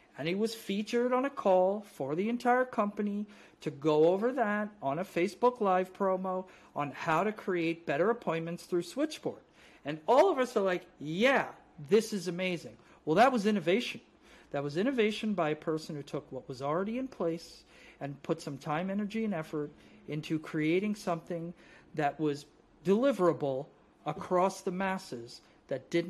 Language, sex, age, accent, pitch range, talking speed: English, male, 50-69, American, 145-185 Hz, 170 wpm